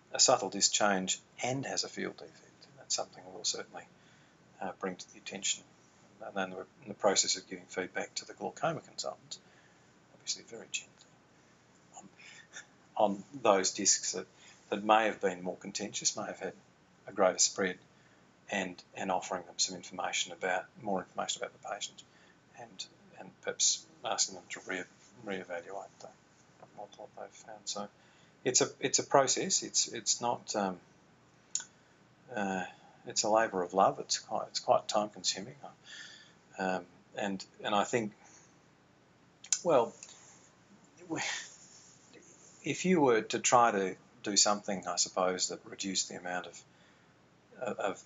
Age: 40-59